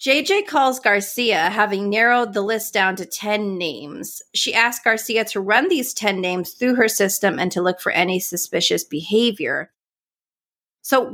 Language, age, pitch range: English, 30-49, 185-245 Hz